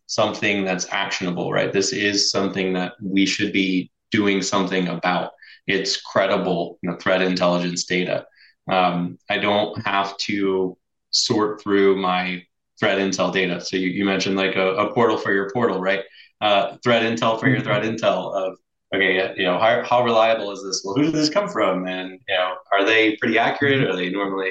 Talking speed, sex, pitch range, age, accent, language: 190 wpm, male, 90-105 Hz, 20-39, American, English